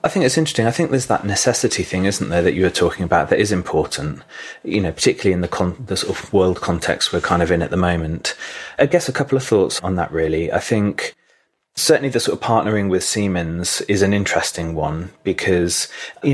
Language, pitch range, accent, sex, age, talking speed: English, 85-105 Hz, British, male, 30-49, 230 wpm